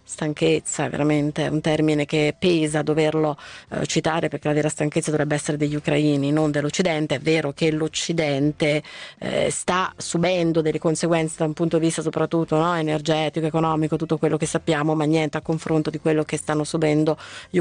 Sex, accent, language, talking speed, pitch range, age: female, native, Italian, 170 wpm, 155-180 Hz, 30-49